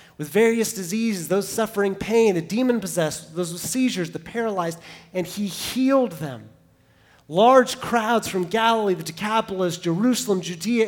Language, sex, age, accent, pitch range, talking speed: English, male, 30-49, American, 140-195 Hz, 140 wpm